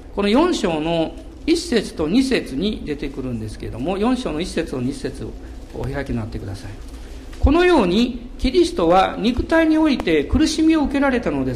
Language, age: Japanese, 50-69